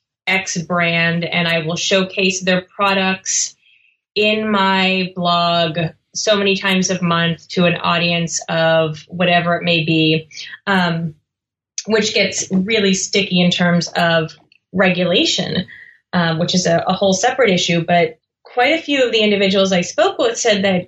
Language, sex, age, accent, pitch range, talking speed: English, female, 20-39, American, 175-200 Hz, 150 wpm